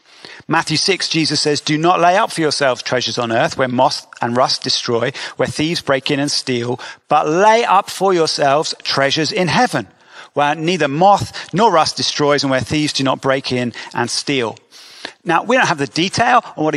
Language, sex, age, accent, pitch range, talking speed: English, male, 40-59, British, 140-190 Hz, 195 wpm